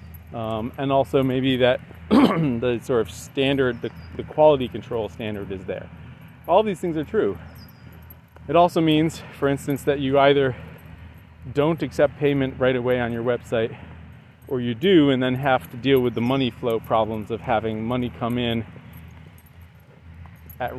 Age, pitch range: 30-49, 85-135 Hz